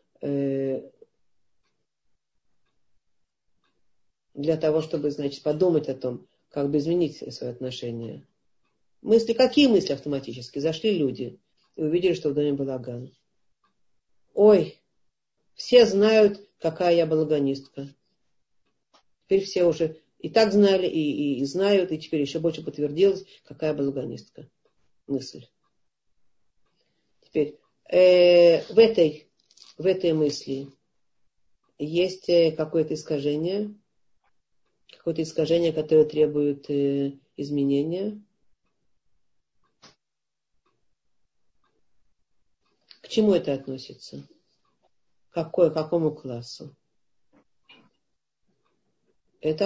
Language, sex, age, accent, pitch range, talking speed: Russian, female, 40-59, native, 140-180 Hz, 85 wpm